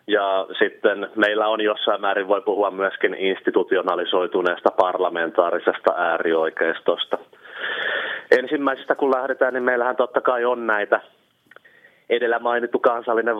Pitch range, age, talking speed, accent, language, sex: 105-120 Hz, 30-49, 110 wpm, native, Finnish, male